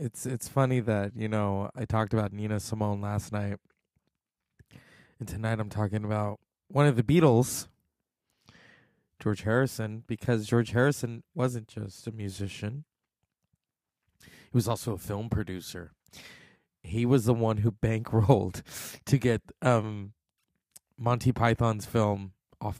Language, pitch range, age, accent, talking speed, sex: English, 105-130 Hz, 20-39, American, 130 wpm, male